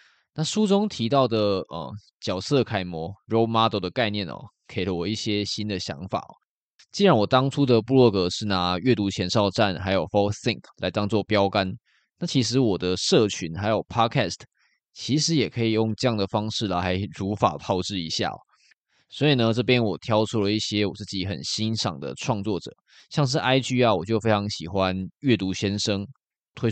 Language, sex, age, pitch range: Chinese, male, 20-39, 95-115 Hz